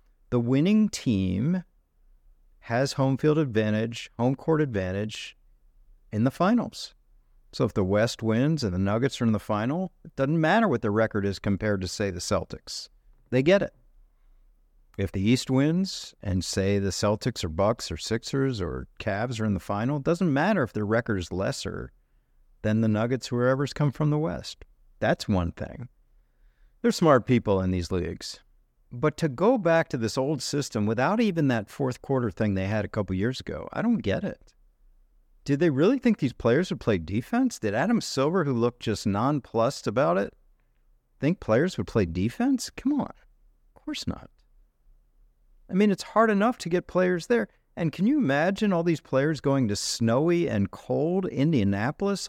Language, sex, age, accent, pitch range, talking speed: English, male, 50-69, American, 105-165 Hz, 180 wpm